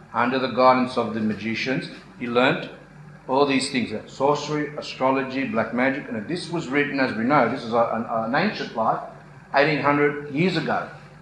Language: English